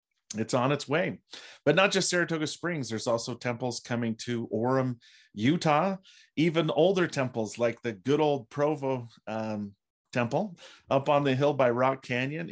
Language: English